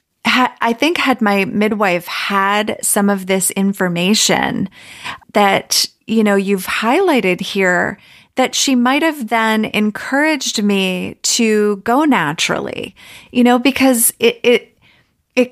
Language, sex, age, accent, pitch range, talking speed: English, female, 30-49, American, 195-240 Hz, 120 wpm